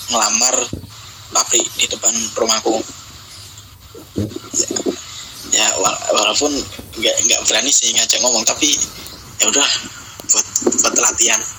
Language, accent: Indonesian, native